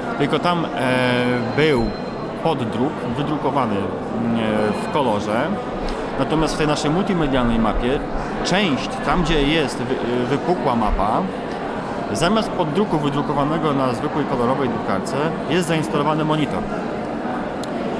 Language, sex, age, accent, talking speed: Polish, male, 30-49, native, 95 wpm